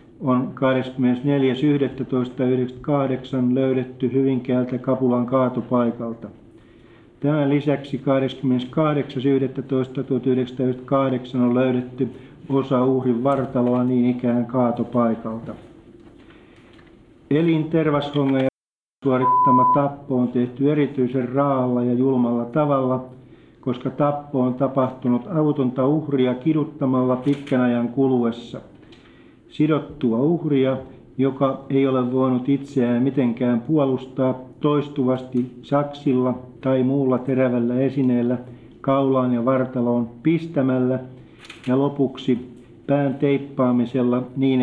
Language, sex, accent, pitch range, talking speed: Finnish, male, native, 125-140 Hz, 85 wpm